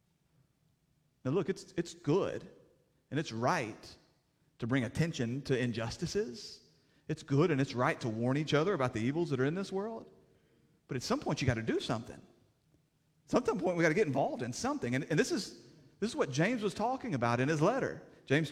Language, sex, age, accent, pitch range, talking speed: English, male, 40-59, American, 135-180 Hz, 205 wpm